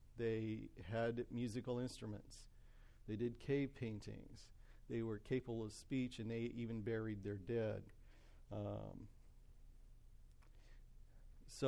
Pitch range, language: 110-125 Hz, English